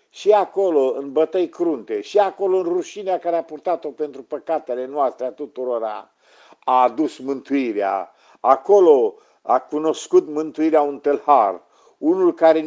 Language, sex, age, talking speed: Romanian, male, 50-69, 135 wpm